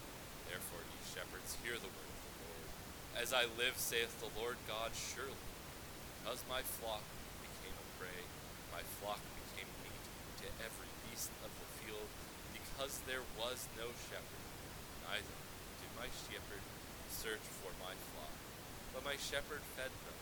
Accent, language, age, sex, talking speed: American, English, 30-49, male, 145 wpm